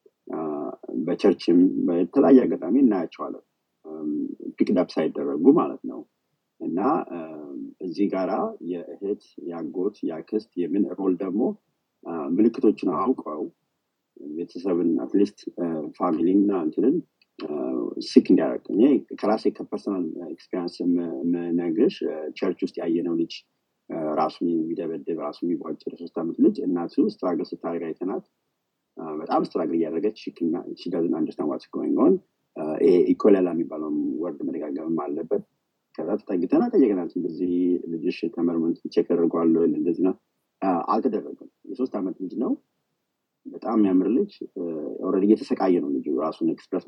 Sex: male